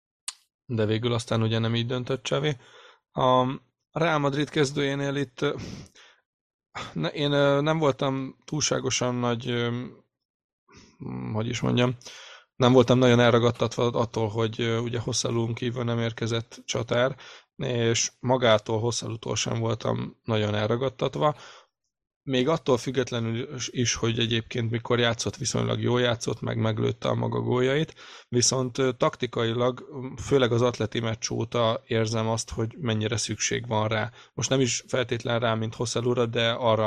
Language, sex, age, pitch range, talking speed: Hungarian, male, 20-39, 115-130 Hz, 130 wpm